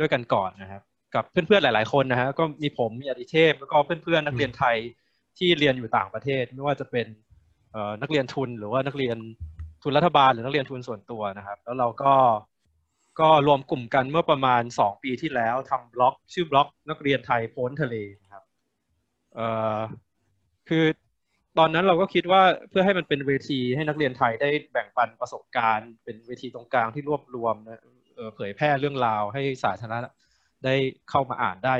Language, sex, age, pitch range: Thai, male, 20-39, 115-145 Hz